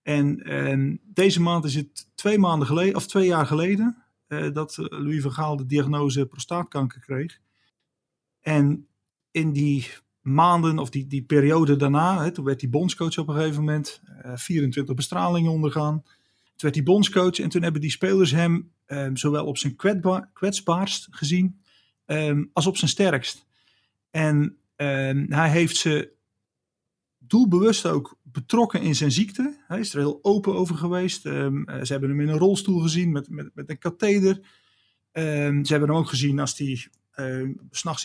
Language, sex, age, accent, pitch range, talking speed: Dutch, male, 40-59, Dutch, 140-175 Hz, 160 wpm